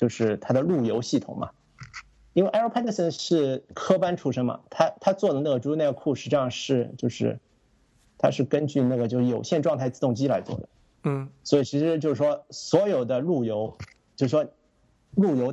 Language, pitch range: Chinese, 140-215 Hz